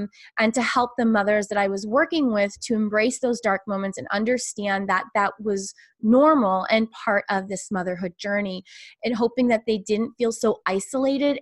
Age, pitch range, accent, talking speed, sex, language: 20-39, 190-240 Hz, American, 185 wpm, female, English